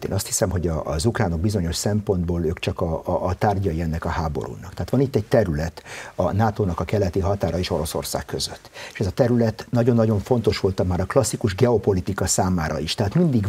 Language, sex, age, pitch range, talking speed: Hungarian, male, 50-69, 95-130 Hz, 205 wpm